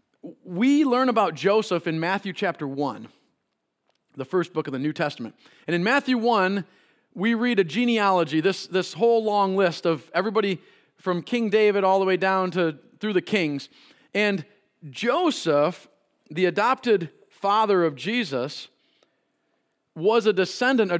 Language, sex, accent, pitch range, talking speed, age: English, male, American, 165-215 Hz, 150 wpm, 40-59